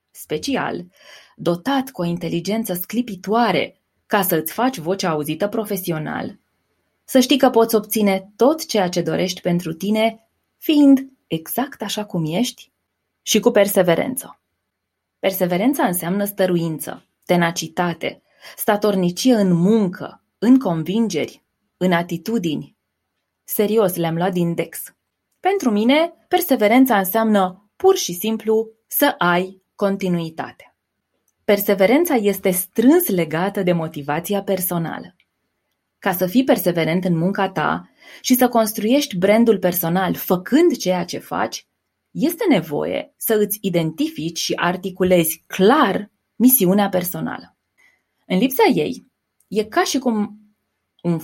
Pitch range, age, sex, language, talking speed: 175-230 Hz, 20-39, female, Romanian, 115 wpm